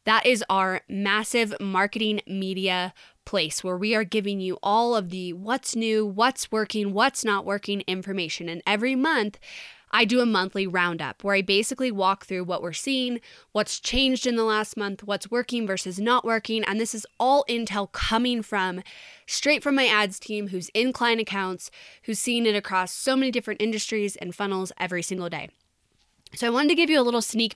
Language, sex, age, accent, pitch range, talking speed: English, female, 10-29, American, 190-235 Hz, 190 wpm